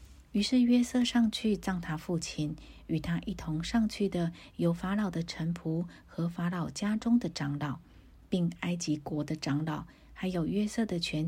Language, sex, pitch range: Chinese, female, 155-200 Hz